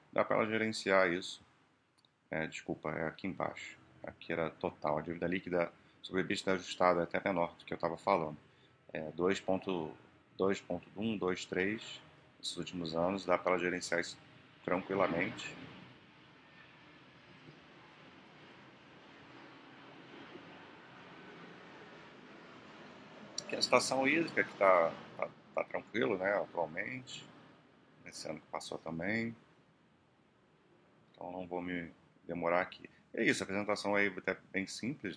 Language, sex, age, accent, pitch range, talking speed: Portuguese, male, 40-59, Brazilian, 85-95 Hz, 120 wpm